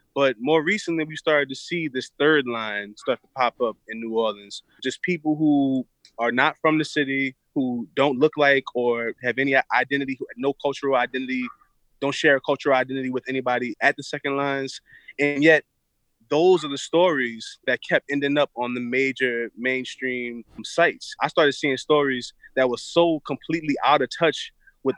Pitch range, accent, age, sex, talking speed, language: 125-150 Hz, American, 20-39, male, 185 wpm, English